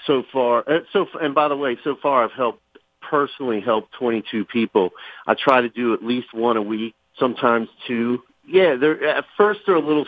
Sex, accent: male, American